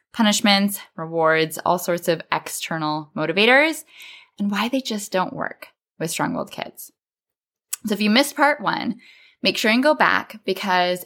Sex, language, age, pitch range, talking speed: female, English, 10-29, 170-220 Hz, 150 wpm